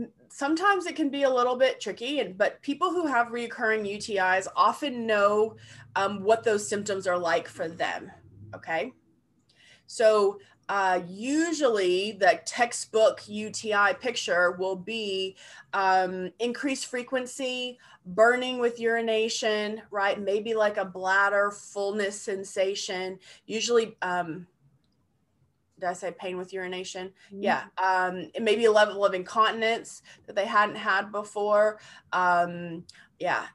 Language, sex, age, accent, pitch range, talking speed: English, female, 20-39, American, 185-235 Hz, 130 wpm